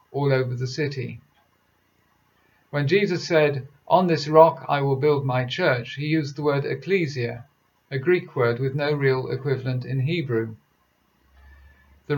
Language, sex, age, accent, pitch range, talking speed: English, male, 50-69, British, 130-155 Hz, 150 wpm